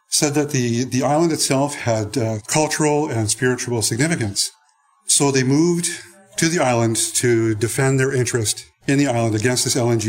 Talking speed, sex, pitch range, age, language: 165 wpm, male, 115-145 Hz, 50-69, English